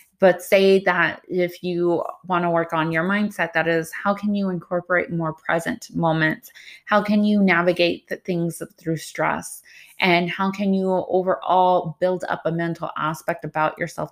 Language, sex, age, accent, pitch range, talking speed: English, female, 20-39, American, 160-195 Hz, 170 wpm